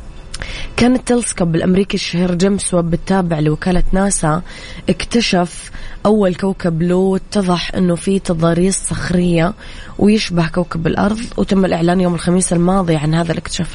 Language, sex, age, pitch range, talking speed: Arabic, female, 20-39, 165-200 Hz, 120 wpm